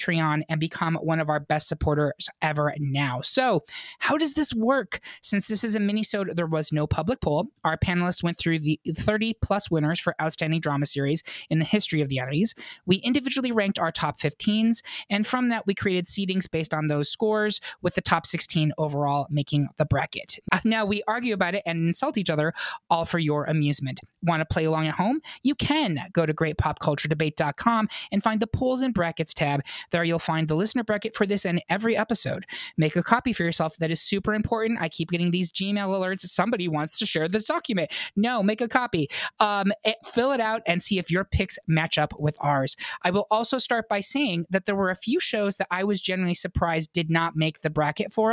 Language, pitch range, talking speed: English, 160-215 Hz, 210 wpm